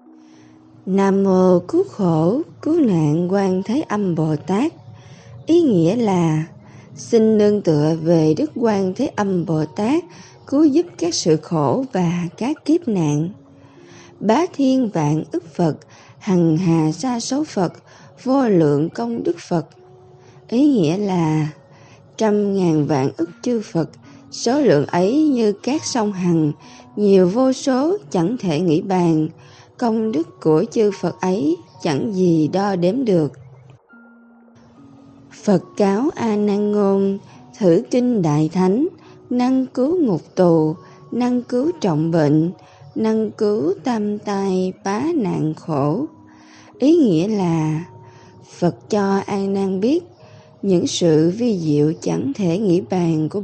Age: 20-39